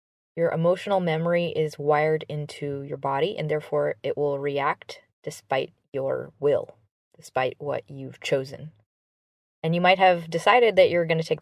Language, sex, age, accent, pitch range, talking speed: English, female, 20-39, American, 150-185 Hz, 160 wpm